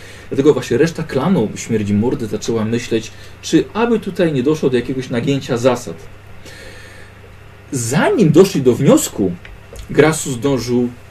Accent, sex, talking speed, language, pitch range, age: native, male, 125 wpm, Polish, 100-120 Hz, 40-59